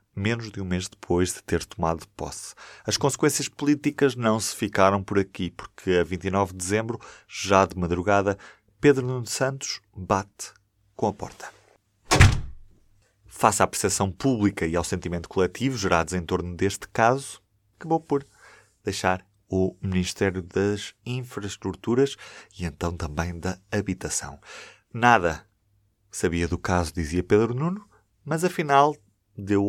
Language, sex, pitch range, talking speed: Portuguese, male, 90-110 Hz, 135 wpm